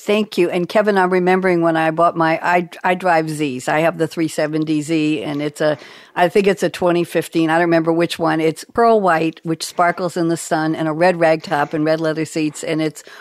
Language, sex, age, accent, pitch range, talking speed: English, female, 60-79, American, 160-215 Hz, 230 wpm